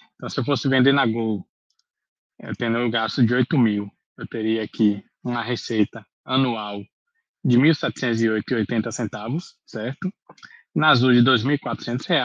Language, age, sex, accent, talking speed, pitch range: Portuguese, 20-39, male, Brazilian, 140 wpm, 115-150 Hz